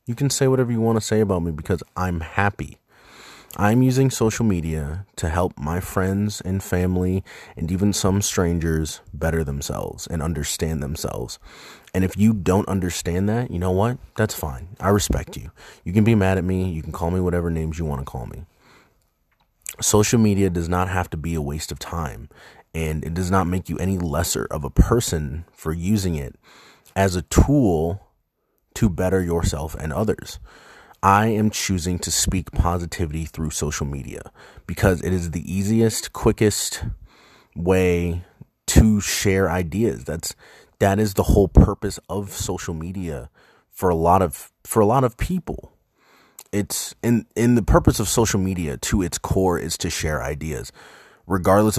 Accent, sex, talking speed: American, male, 175 wpm